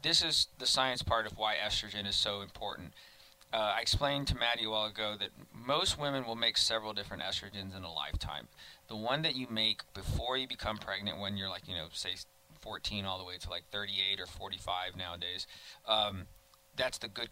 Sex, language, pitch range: male, English, 95-110 Hz